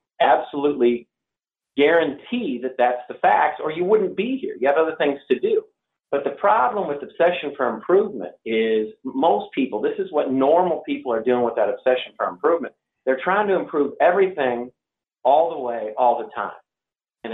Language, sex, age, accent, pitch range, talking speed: English, male, 40-59, American, 125-170 Hz, 175 wpm